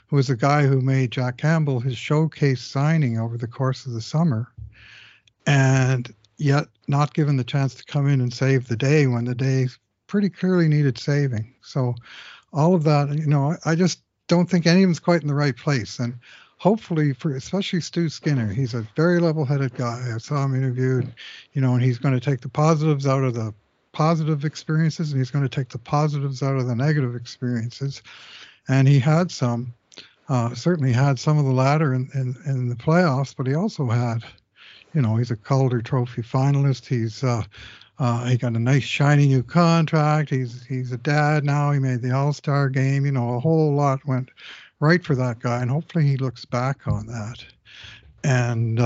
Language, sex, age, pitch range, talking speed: English, male, 60-79, 120-150 Hz, 195 wpm